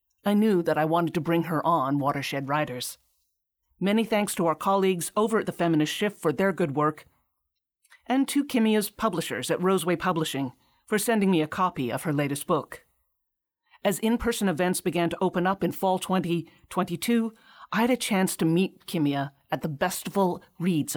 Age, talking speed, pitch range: 40-59, 175 wpm, 150-195 Hz